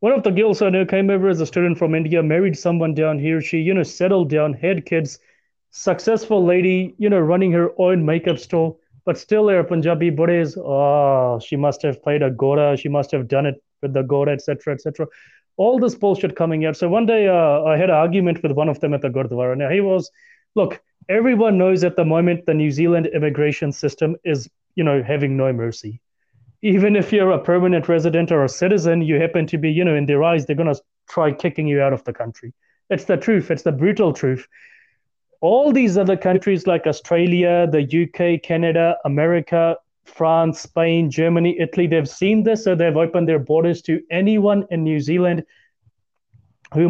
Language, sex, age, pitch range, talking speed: English, male, 20-39, 145-185 Hz, 205 wpm